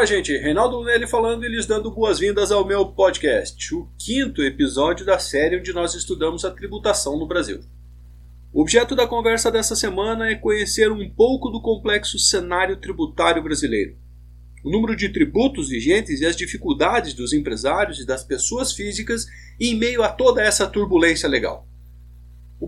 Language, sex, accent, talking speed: Portuguese, male, Brazilian, 160 wpm